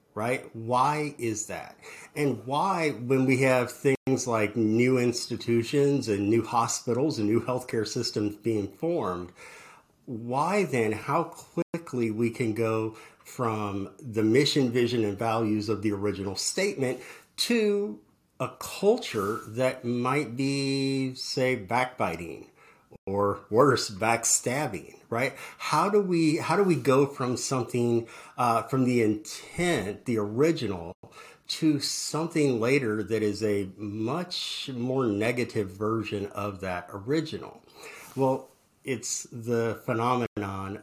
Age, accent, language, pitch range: 50-69, American, English, 110-140 Hz